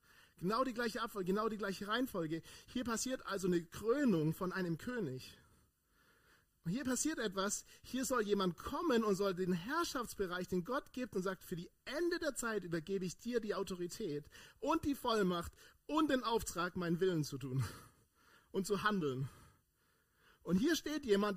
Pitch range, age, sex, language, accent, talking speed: 145-225 Hz, 40-59, male, German, German, 165 wpm